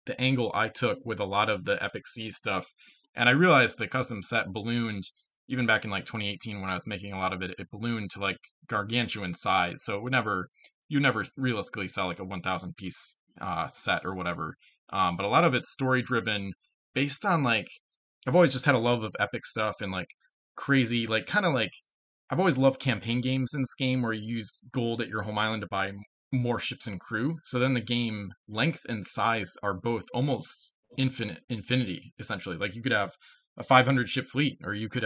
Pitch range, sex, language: 100-125 Hz, male, English